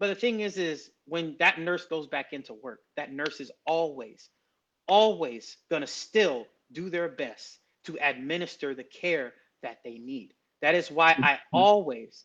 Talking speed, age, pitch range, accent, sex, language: 165 wpm, 30-49, 135-180 Hz, American, male, English